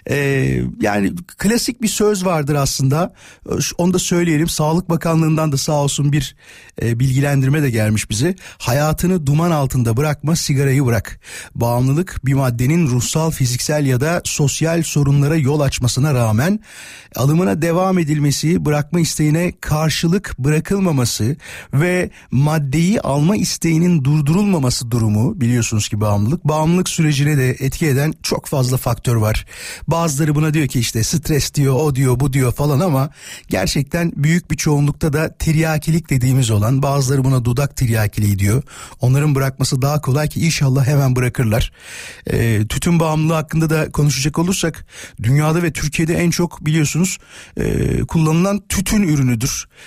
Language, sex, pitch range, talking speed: Turkish, male, 130-165 Hz, 140 wpm